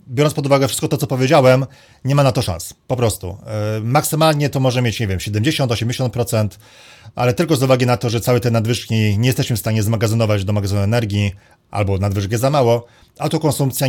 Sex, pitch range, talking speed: male, 105-135 Hz, 205 wpm